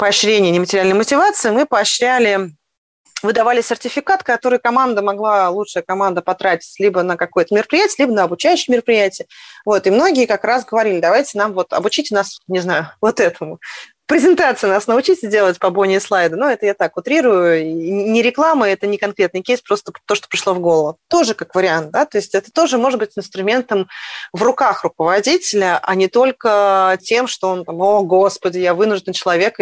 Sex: female